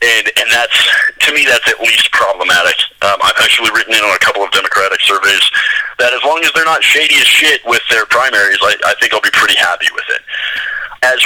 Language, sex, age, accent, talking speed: English, male, 30-49, American, 225 wpm